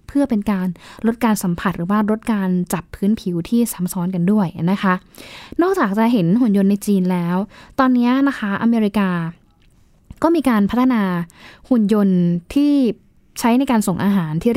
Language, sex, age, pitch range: Thai, female, 10-29, 190-235 Hz